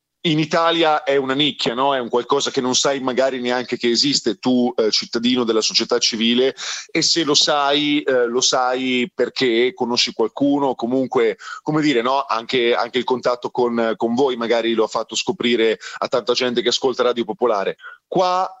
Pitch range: 120-145 Hz